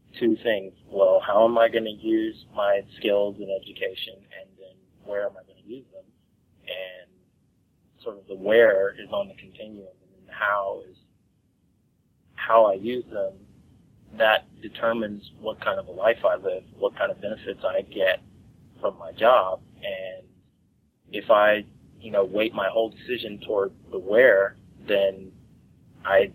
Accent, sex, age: American, male, 30-49